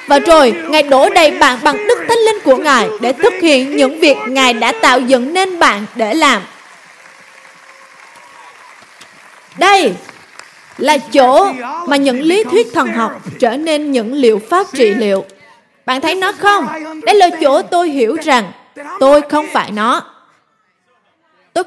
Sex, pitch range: female, 225-300 Hz